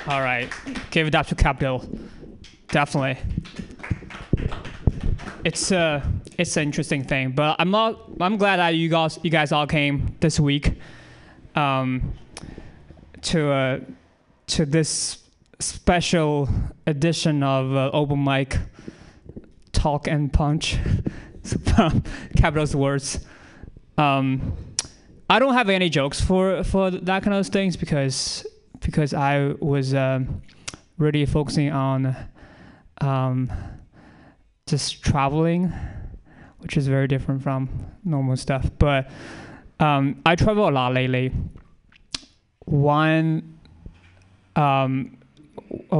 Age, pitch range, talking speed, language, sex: 20-39, 130-160 Hz, 110 wpm, English, male